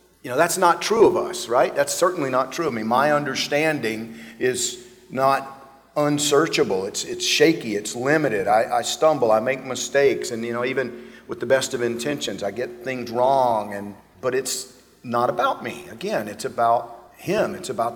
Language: English